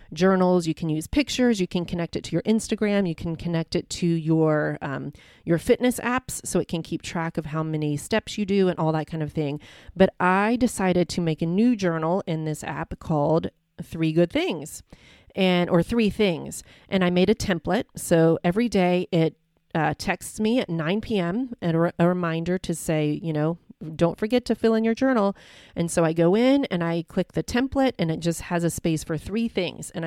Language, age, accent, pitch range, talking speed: English, 30-49, American, 165-200 Hz, 215 wpm